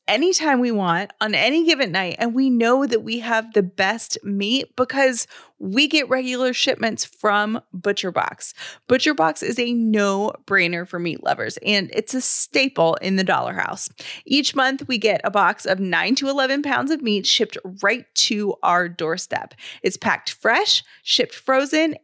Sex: female